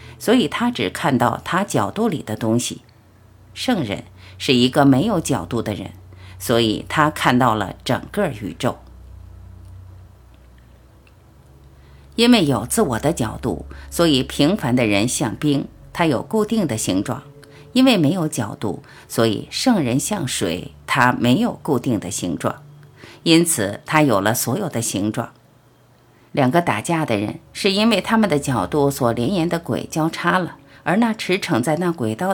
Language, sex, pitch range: Chinese, female, 110-185 Hz